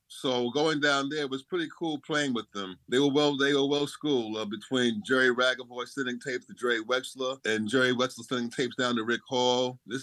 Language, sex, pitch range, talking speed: English, male, 125-150 Hz, 215 wpm